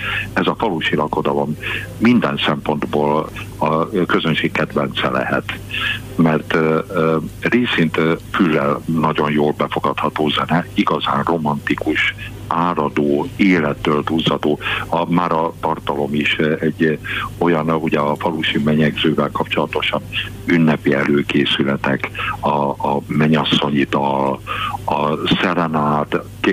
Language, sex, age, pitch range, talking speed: Hungarian, male, 60-79, 75-90 Hz, 95 wpm